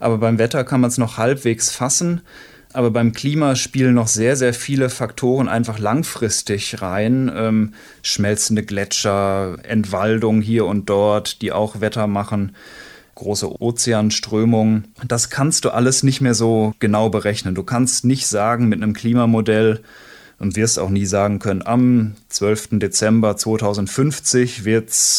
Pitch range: 105-130 Hz